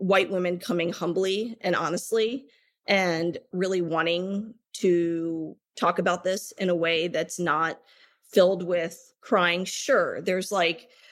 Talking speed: 130 wpm